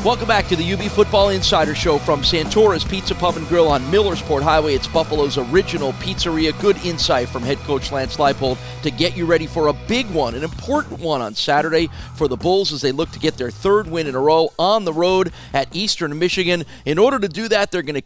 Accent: American